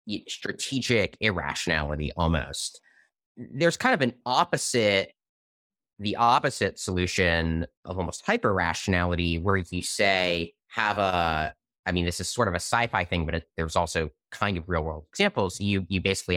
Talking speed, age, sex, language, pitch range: 145 wpm, 30-49, male, English, 85-125 Hz